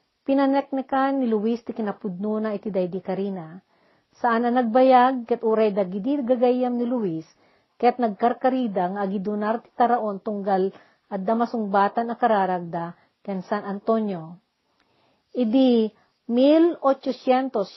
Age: 40-59